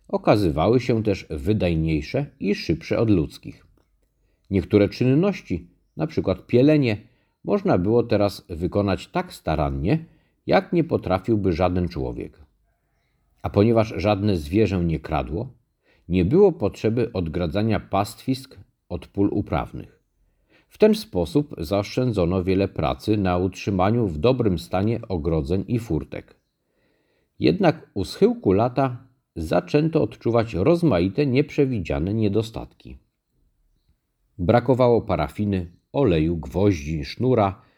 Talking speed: 105 wpm